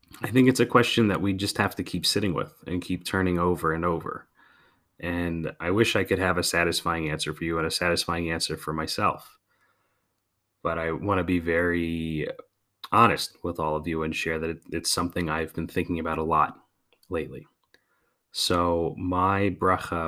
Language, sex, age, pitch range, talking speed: English, male, 30-49, 85-100 Hz, 185 wpm